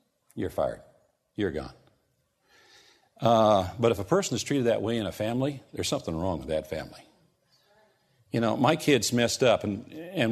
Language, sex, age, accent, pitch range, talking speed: English, male, 50-69, American, 115-150 Hz, 175 wpm